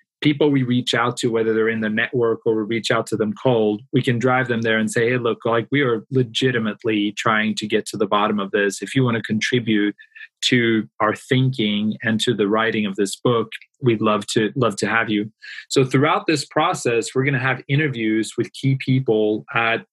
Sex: male